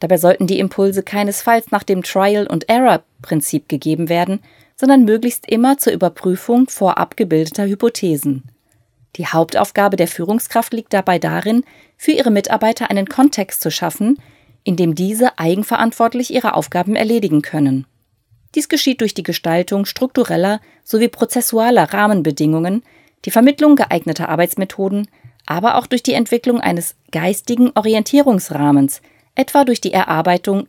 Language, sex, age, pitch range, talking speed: German, female, 30-49, 165-235 Hz, 125 wpm